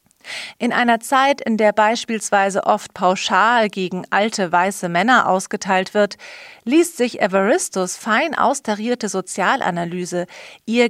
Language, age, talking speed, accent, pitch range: German, 40-59, 115 wpm, German, 190-240 Hz